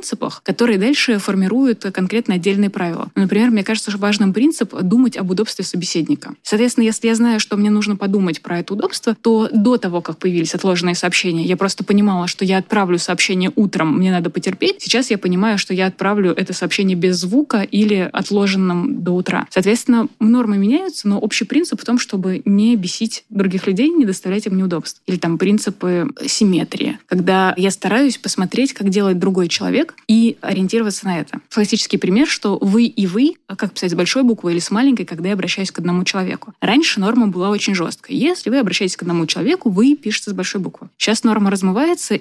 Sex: female